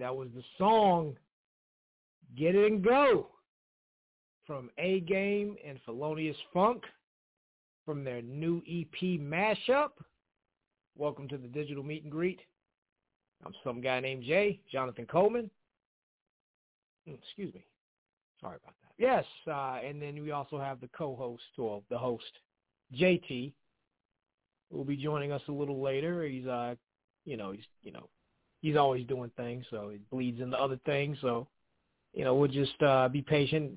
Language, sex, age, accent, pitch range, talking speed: English, male, 40-59, American, 130-170 Hz, 145 wpm